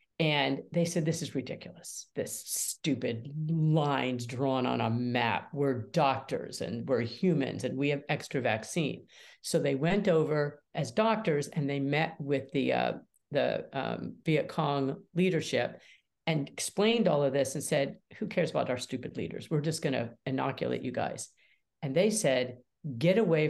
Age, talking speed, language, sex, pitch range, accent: 50-69, 165 wpm, English, female, 135-180 Hz, American